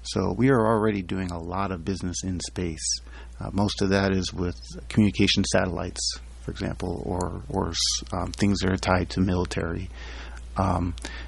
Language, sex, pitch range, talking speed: English, male, 85-105 Hz, 165 wpm